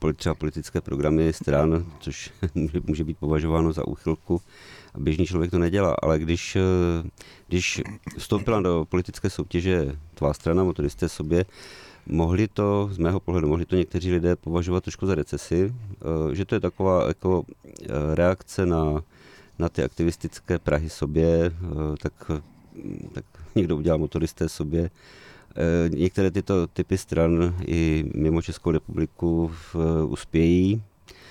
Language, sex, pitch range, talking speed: Czech, male, 80-95 Hz, 125 wpm